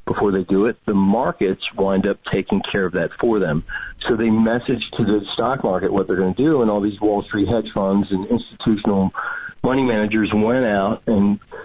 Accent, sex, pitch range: American, male, 95-115 Hz